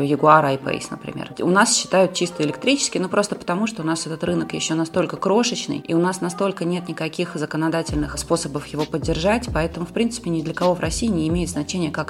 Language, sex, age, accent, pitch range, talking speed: Russian, female, 20-39, native, 145-185 Hz, 205 wpm